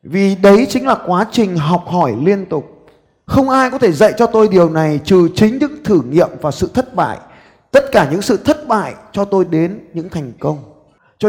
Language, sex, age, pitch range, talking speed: Vietnamese, male, 20-39, 145-205 Hz, 220 wpm